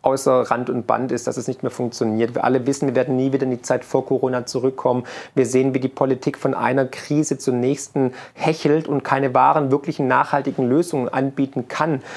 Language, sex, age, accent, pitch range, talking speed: German, male, 40-59, German, 135-160 Hz, 205 wpm